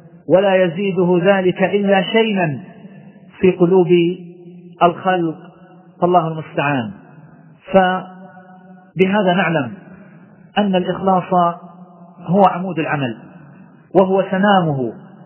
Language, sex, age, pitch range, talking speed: Arabic, male, 50-69, 170-190 Hz, 75 wpm